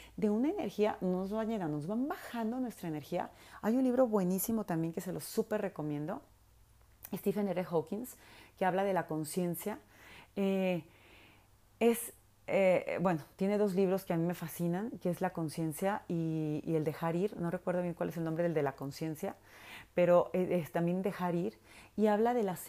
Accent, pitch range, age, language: Mexican, 165-205 Hz, 30-49, Spanish